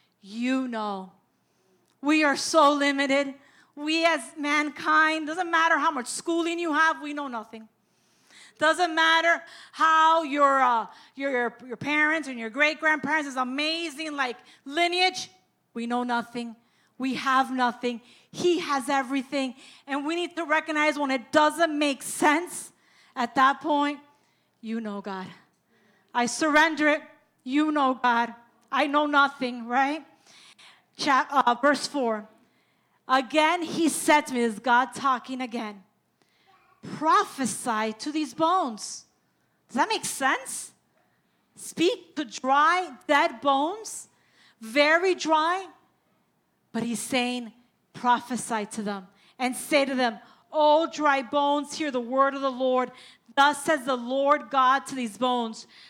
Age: 40-59